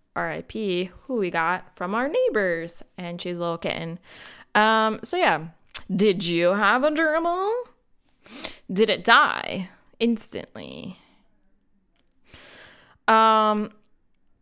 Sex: female